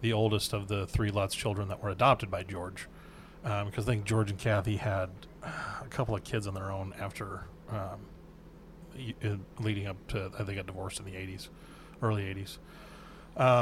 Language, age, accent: English, 30-49, American